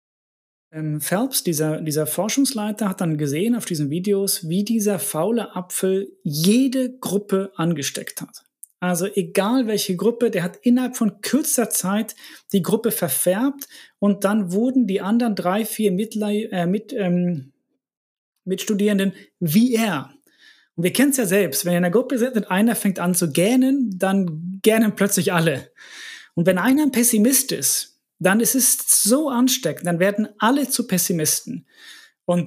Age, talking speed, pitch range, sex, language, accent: 30-49, 155 wpm, 170-230 Hz, male, German, German